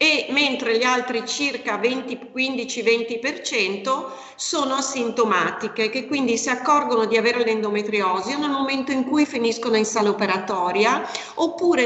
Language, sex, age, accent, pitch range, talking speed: Italian, female, 40-59, native, 220-265 Hz, 120 wpm